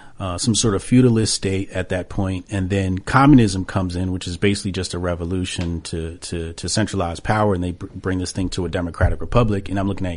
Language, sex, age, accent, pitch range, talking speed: English, male, 40-59, American, 90-115 Hz, 230 wpm